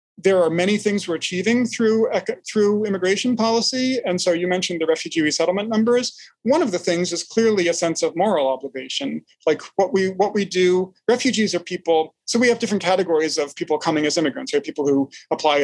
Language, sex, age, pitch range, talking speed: English, male, 40-59, 145-205 Hz, 200 wpm